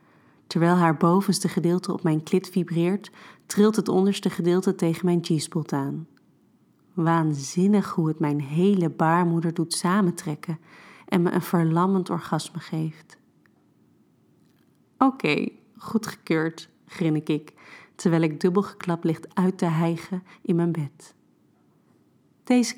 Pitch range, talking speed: 165-185 Hz, 120 wpm